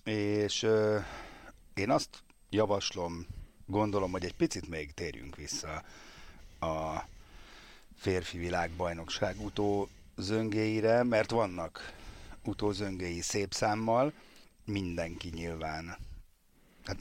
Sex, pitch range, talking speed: male, 90-115 Hz, 85 wpm